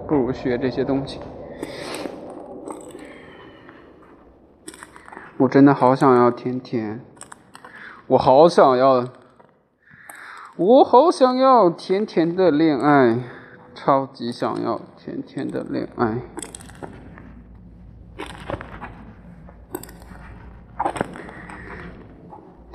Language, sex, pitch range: Chinese, male, 115-135 Hz